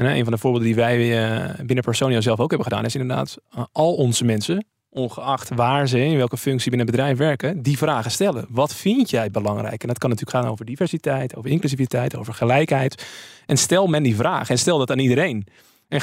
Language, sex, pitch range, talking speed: Dutch, male, 125-155 Hz, 215 wpm